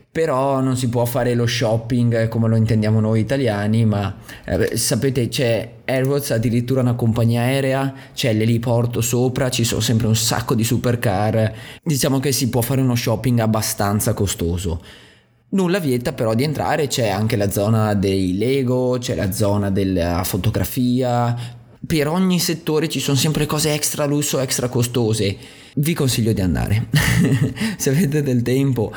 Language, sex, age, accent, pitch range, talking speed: Italian, male, 20-39, native, 110-135 Hz, 155 wpm